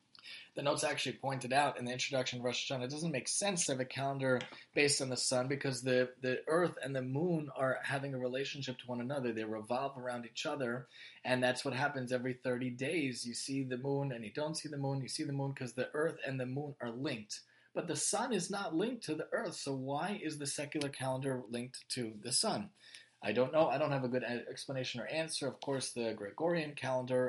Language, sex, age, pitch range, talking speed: English, male, 30-49, 120-140 Hz, 235 wpm